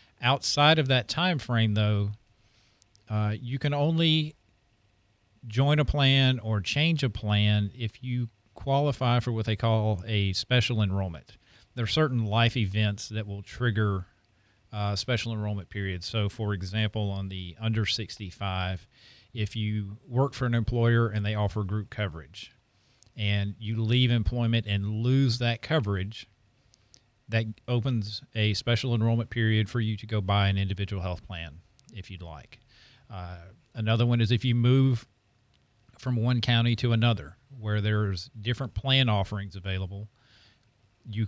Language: English